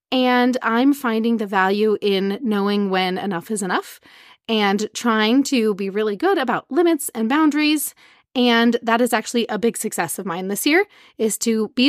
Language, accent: English, American